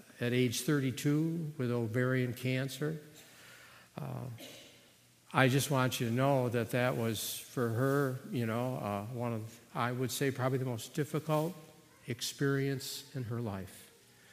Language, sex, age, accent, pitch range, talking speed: English, male, 50-69, American, 110-125 Hz, 140 wpm